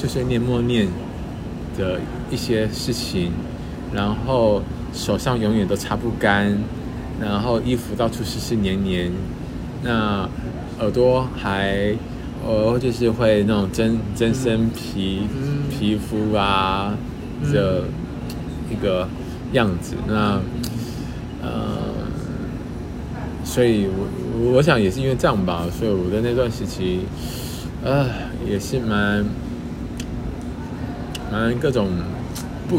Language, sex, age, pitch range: Chinese, male, 20-39, 100-120 Hz